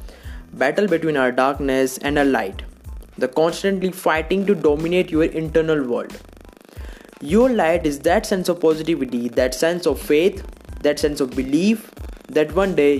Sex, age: male, 20-39